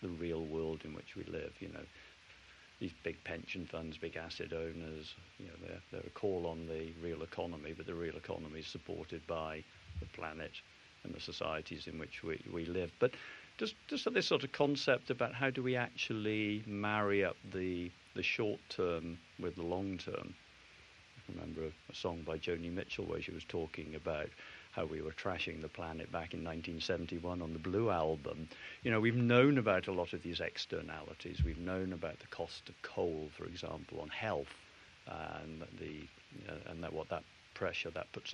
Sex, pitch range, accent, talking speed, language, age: male, 80-95 Hz, British, 190 wpm, English, 50-69